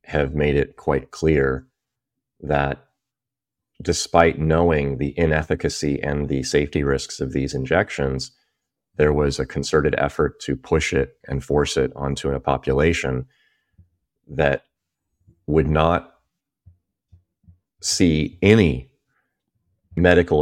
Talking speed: 110 wpm